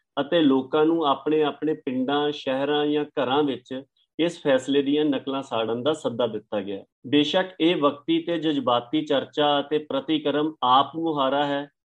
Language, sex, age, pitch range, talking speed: Punjabi, male, 50-69, 135-160 Hz, 155 wpm